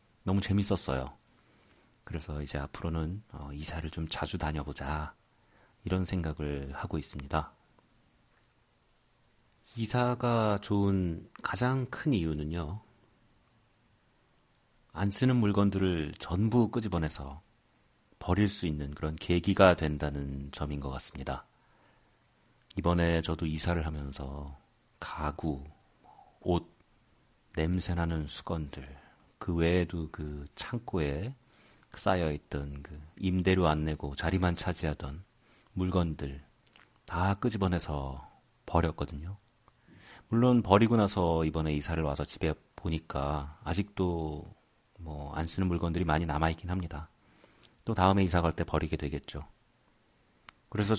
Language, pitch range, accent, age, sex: Korean, 75-100 Hz, native, 40-59, male